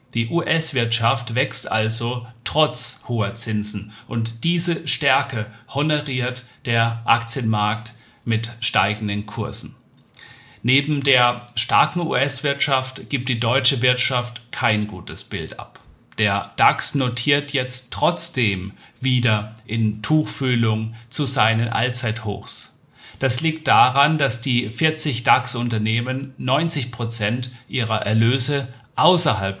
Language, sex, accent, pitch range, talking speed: German, male, German, 110-130 Hz, 100 wpm